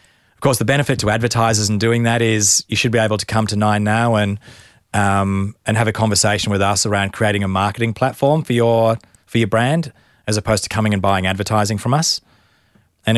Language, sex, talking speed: English, male, 215 wpm